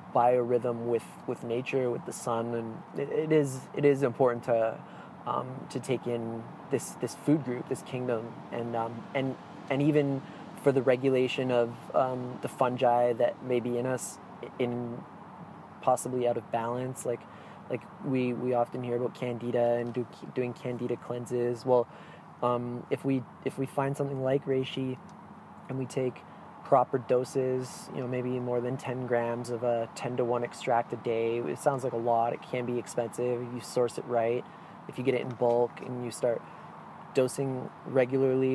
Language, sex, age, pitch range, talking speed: English, male, 20-39, 120-135 Hz, 175 wpm